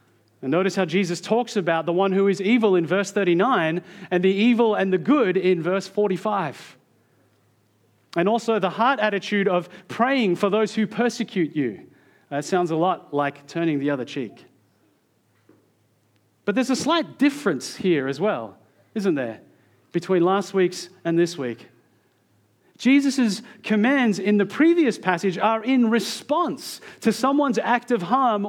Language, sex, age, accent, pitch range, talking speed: English, male, 40-59, Australian, 135-220 Hz, 155 wpm